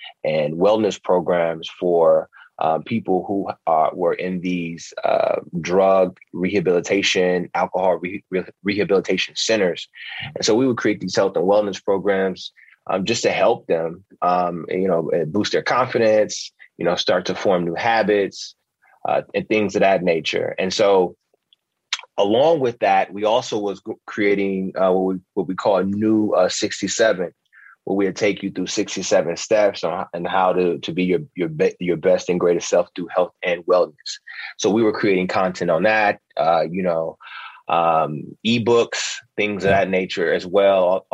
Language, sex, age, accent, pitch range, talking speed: English, male, 30-49, American, 90-105 Hz, 170 wpm